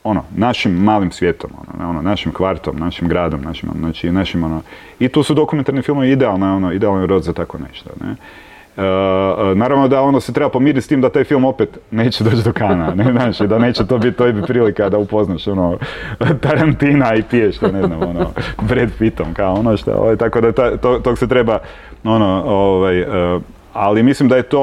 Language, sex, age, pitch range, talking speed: Croatian, male, 30-49, 95-120 Hz, 200 wpm